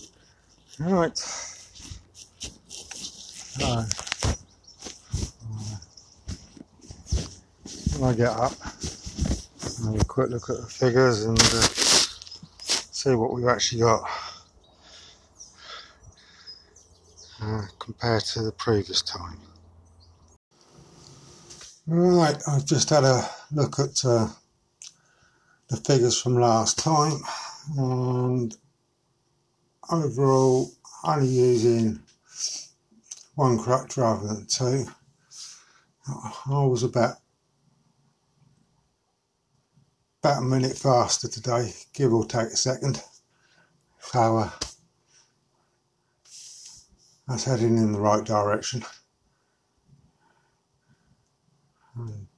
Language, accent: English, British